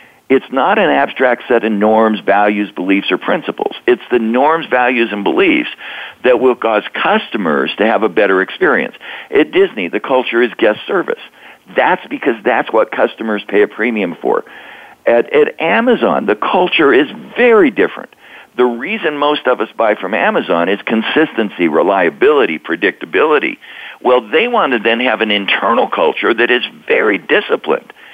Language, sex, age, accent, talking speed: English, male, 60-79, American, 160 wpm